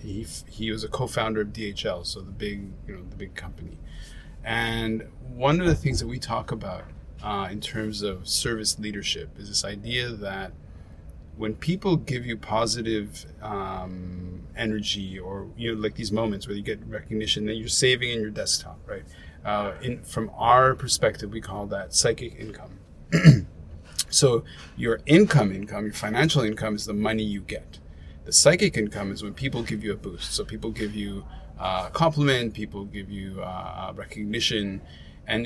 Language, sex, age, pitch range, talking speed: English, male, 30-49, 90-115 Hz, 175 wpm